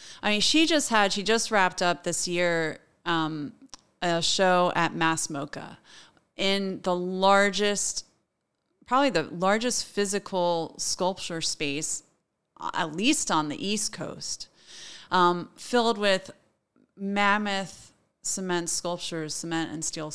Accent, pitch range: American, 170-215 Hz